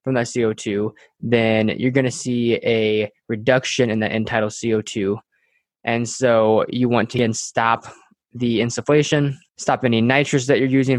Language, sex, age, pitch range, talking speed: English, male, 20-39, 115-130 Hz, 160 wpm